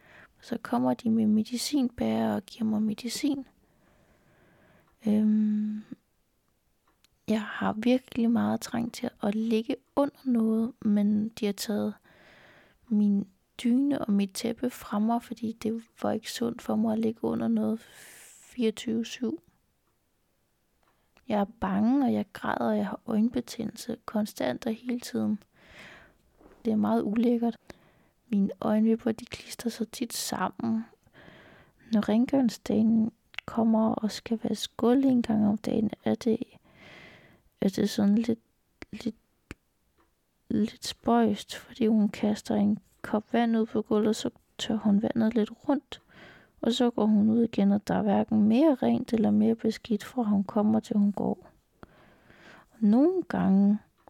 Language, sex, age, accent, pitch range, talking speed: Danish, female, 20-39, native, 210-235 Hz, 140 wpm